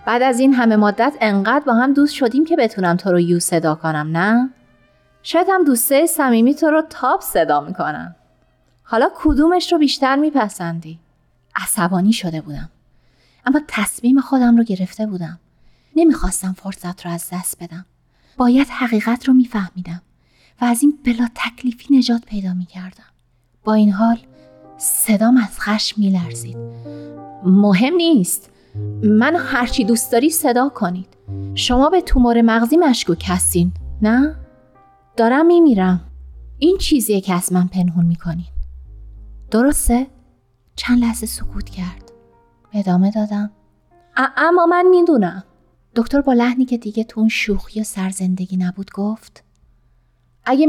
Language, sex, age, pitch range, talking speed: Persian, female, 30-49, 170-260 Hz, 135 wpm